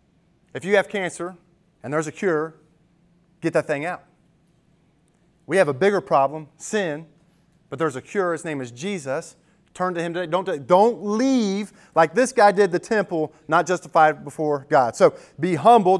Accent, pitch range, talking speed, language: American, 165-205 Hz, 175 wpm, English